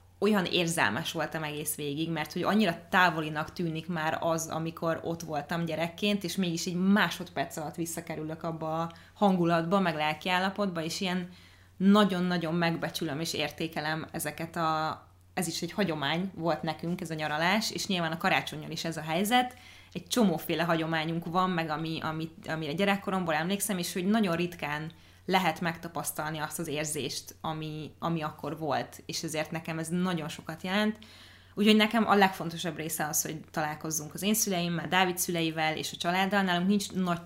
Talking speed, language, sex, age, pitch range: 165 wpm, Hungarian, female, 20-39, 155-180 Hz